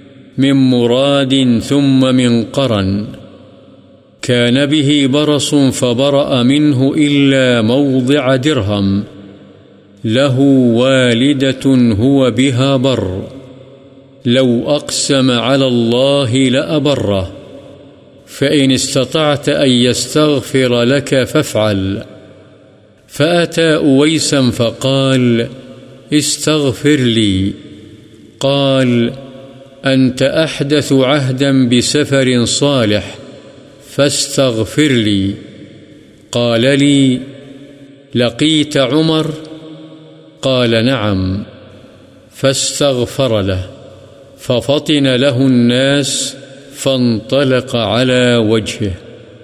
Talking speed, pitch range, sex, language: 70 wpm, 115-140 Hz, male, Urdu